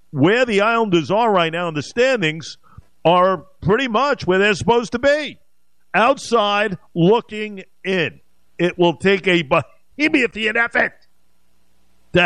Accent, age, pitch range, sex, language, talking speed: American, 50-69, 130-185 Hz, male, English, 135 wpm